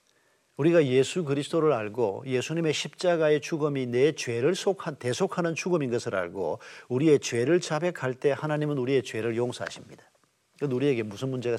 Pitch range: 120-155 Hz